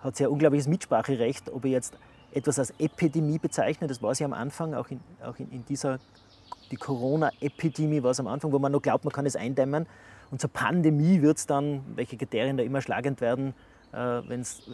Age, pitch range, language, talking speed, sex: 30-49, 130-150 Hz, German, 200 wpm, male